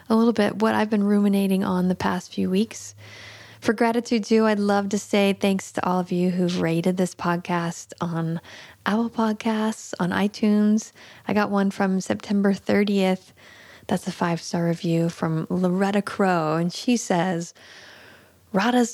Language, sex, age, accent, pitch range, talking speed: English, female, 20-39, American, 170-210 Hz, 160 wpm